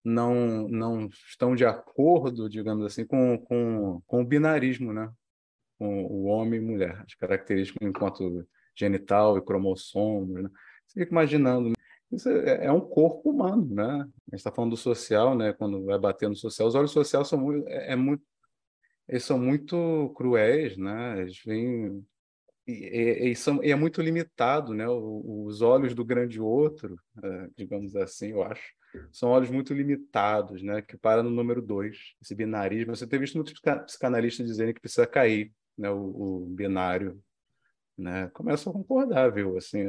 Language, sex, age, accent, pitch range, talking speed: Portuguese, male, 20-39, Brazilian, 100-135 Hz, 150 wpm